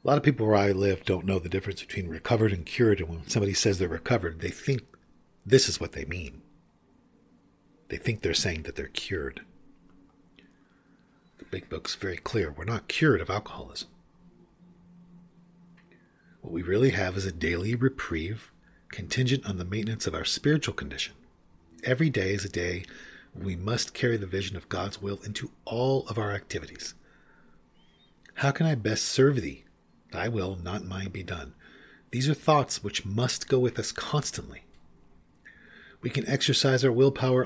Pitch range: 85-125 Hz